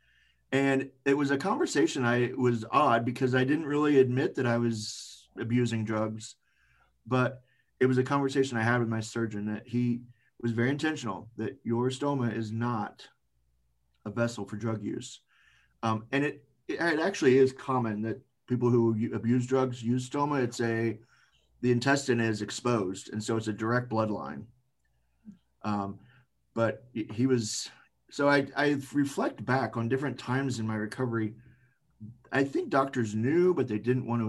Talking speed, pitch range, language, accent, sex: 165 wpm, 115-135 Hz, English, American, male